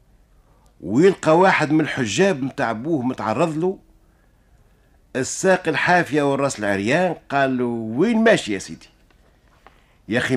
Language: Arabic